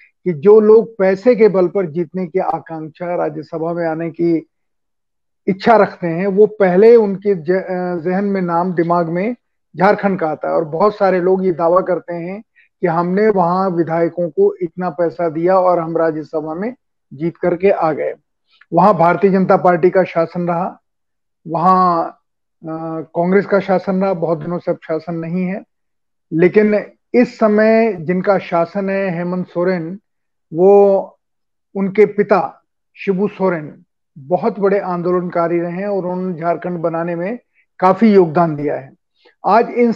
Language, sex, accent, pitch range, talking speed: Hindi, male, native, 175-205 Hz, 155 wpm